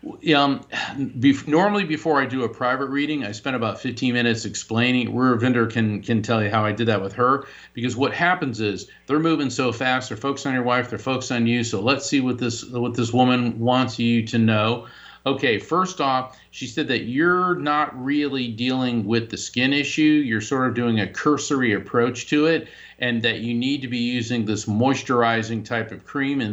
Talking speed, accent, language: 210 wpm, American, English